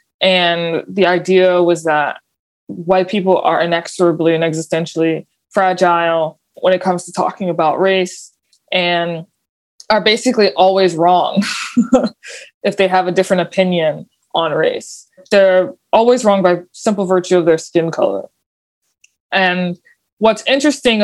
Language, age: English, 20-39